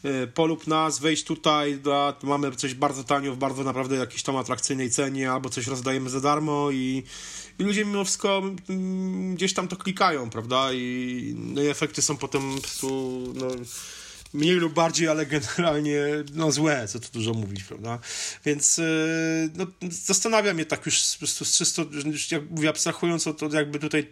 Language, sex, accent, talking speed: Polish, male, native, 165 wpm